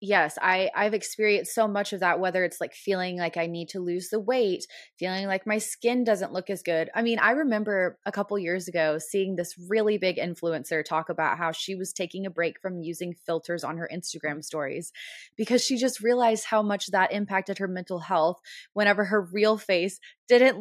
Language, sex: English, female